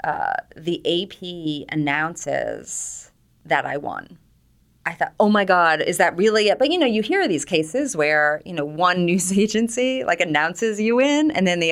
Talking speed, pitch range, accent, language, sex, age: 185 wpm, 155-205 Hz, American, English, female, 30-49